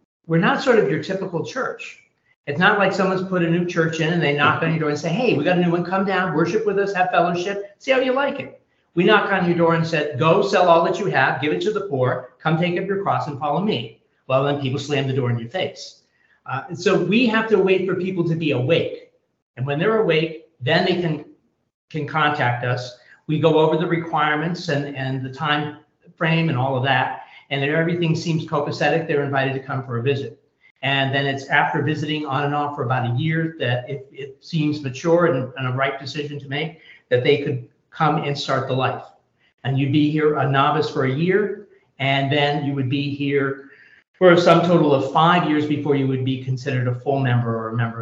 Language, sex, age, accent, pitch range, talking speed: English, male, 50-69, American, 135-175 Hz, 235 wpm